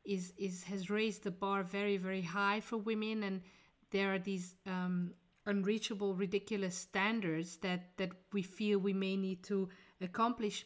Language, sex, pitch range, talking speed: English, female, 190-215 Hz, 160 wpm